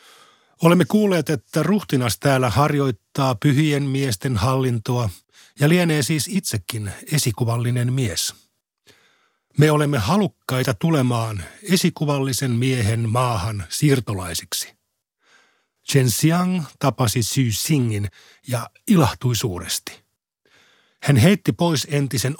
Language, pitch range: Finnish, 120-150 Hz